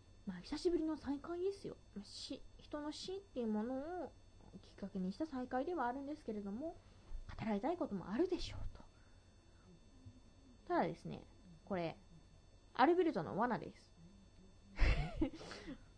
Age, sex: 20-39, female